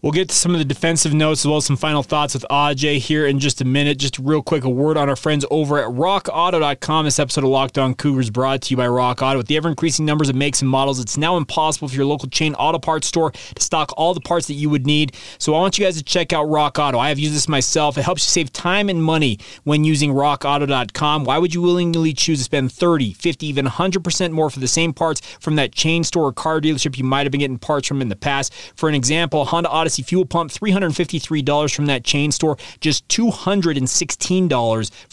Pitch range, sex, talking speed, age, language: 140-170 Hz, male, 245 wpm, 20-39, English